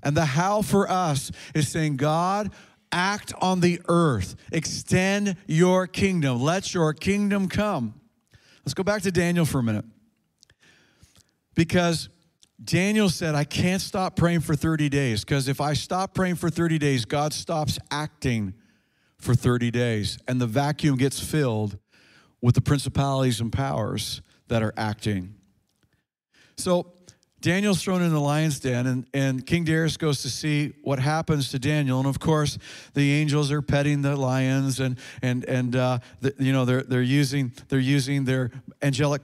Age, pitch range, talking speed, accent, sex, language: 50-69, 125-160 Hz, 160 wpm, American, male, English